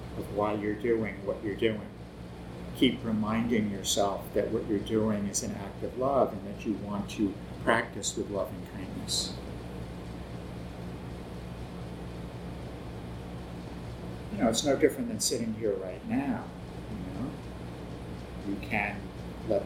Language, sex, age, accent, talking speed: English, male, 50-69, American, 135 wpm